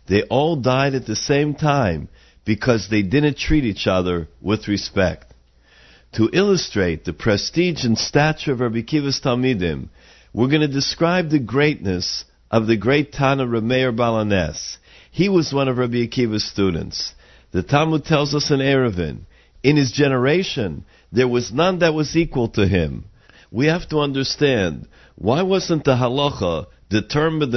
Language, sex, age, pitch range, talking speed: English, male, 50-69, 100-150 Hz, 150 wpm